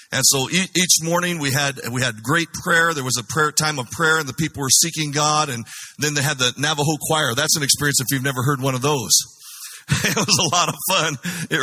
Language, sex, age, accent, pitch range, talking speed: English, male, 50-69, American, 135-160 Hz, 245 wpm